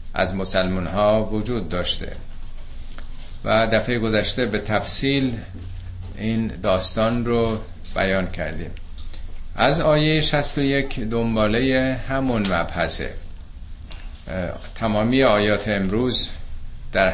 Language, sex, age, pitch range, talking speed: Persian, male, 50-69, 90-115 Hz, 95 wpm